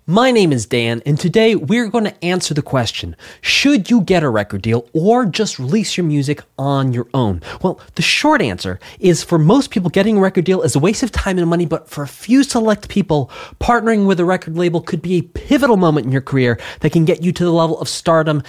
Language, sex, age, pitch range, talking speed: English, male, 20-39, 140-210 Hz, 235 wpm